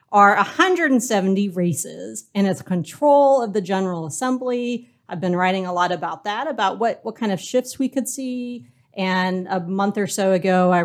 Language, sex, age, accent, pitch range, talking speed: English, female, 40-59, American, 175-210 Hz, 185 wpm